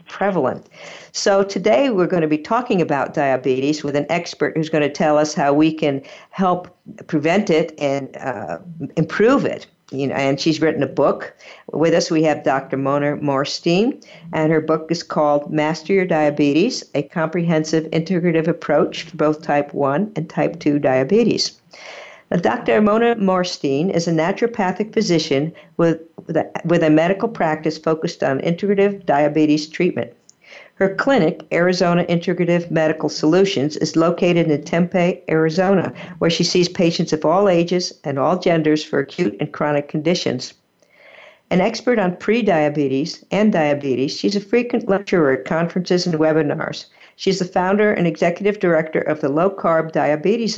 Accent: American